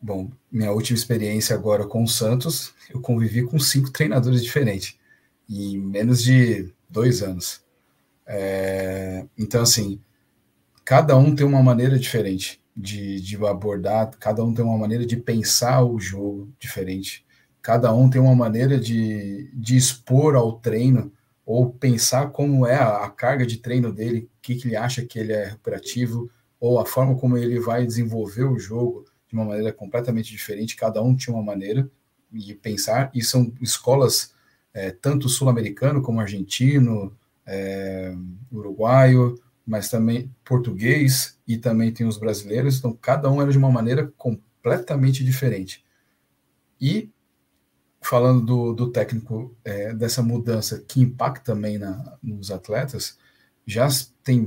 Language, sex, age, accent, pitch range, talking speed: Portuguese, male, 40-59, Brazilian, 105-130 Hz, 140 wpm